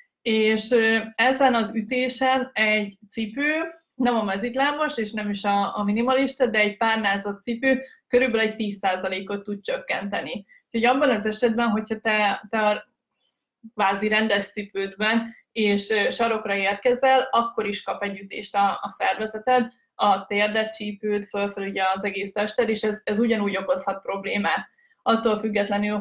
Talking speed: 140 wpm